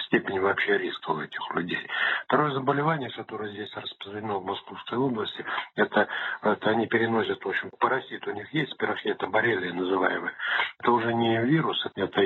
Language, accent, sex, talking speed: Russian, native, male, 155 wpm